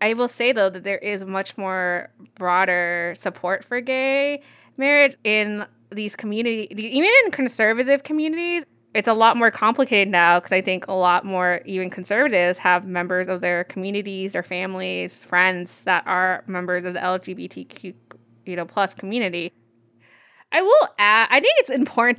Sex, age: female, 20-39